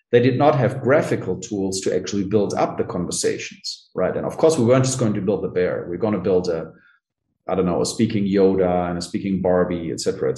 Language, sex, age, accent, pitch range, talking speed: English, male, 30-49, German, 95-125 Hz, 235 wpm